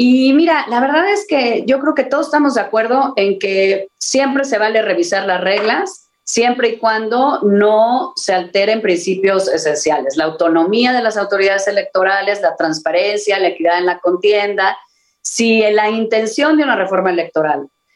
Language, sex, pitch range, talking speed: Spanish, female, 180-230 Hz, 165 wpm